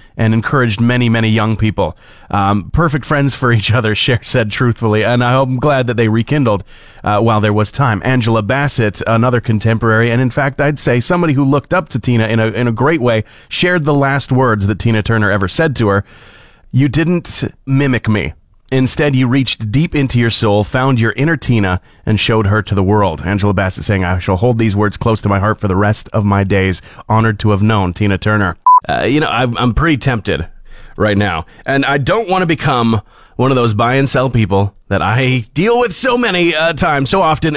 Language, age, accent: English, 30-49, American